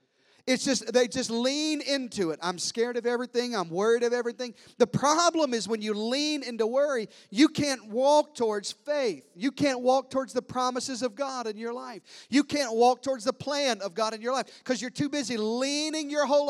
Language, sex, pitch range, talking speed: English, male, 170-255 Hz, 205 wpm